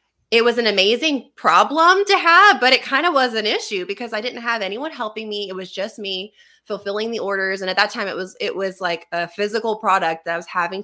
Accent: American